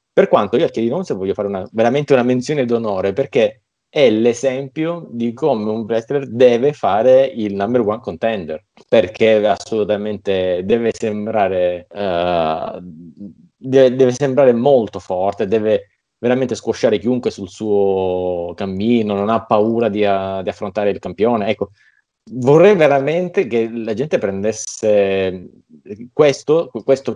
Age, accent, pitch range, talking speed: 30-49, native, 100-130 Hz, 135 wpm